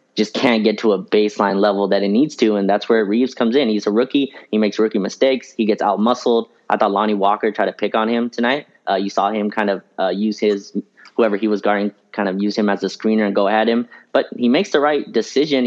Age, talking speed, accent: 20-39, 255 wpm, American